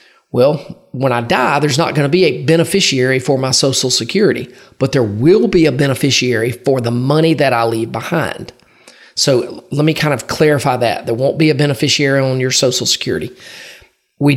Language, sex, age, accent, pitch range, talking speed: English, male, 40-59, American, 125-155 Hz, 190 wpm